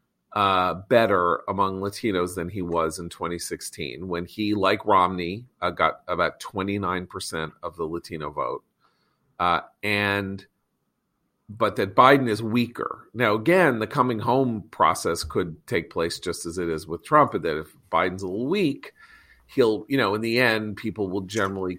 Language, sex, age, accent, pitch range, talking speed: English, male, 40-59, American, 85-110 Hz, 160 wpm